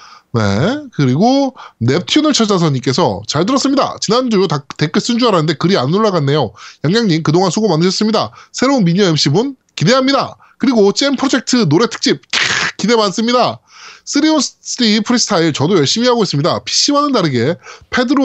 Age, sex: 20-39, male